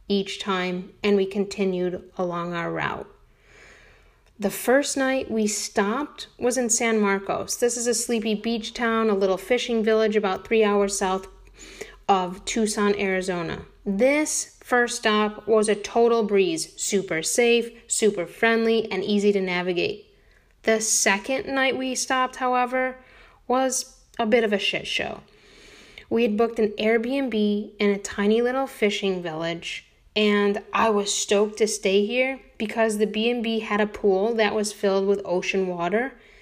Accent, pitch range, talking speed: American, 200-240 Hz, 150 wpm